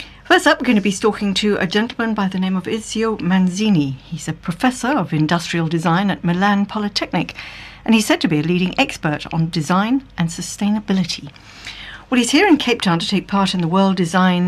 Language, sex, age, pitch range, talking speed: English, female, 60-79, 155-205 Hz, 205 wpm